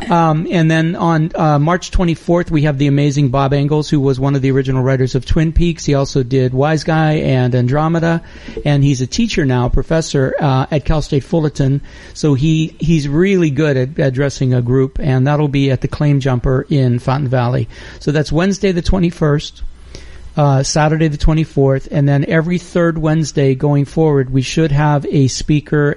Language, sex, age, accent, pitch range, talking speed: English, male, 40-59, American, 130-155 Hz, 185 wpm